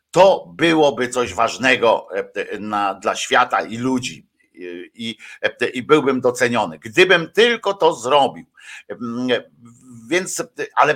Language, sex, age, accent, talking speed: Polish, male, 50-69, native, 110 wpm